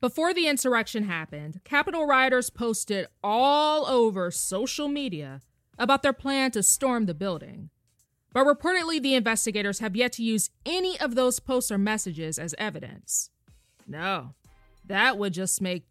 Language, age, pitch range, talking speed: English, 20-39, 185-275 Hz, 145 wpm